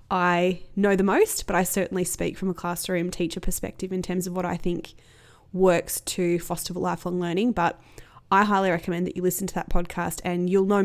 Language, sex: English, female